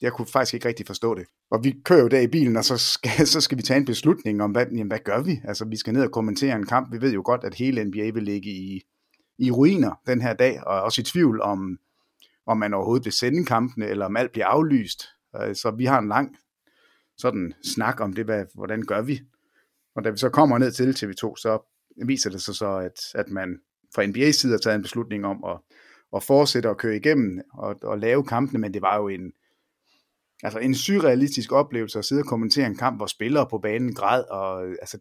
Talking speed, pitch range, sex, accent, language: 235 wpm, 105-130 Hz, male, Danish, English